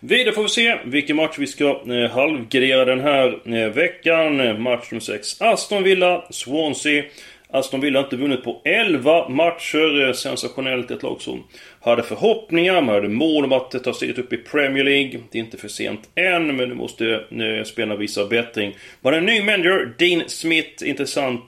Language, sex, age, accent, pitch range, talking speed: Swedish, male, 30-49, native, 115-155 Hz, 185 wpm